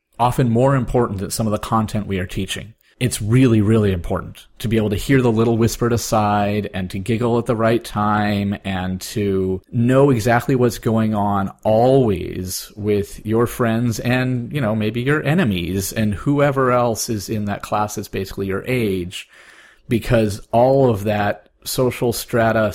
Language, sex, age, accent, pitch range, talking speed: English, male, 30-49, American, 105-130 Hz, 170 wpm